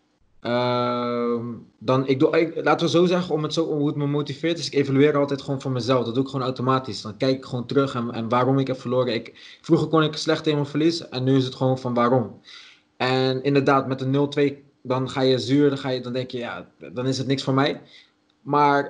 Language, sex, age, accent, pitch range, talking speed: Dutch, male, 20-39, Dutch, 120-140 Hz, 250 wpm